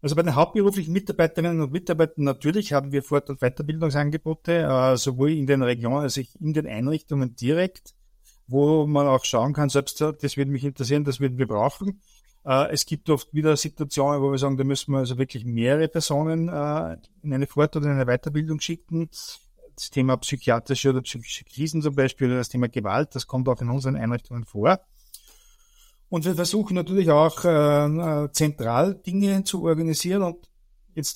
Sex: male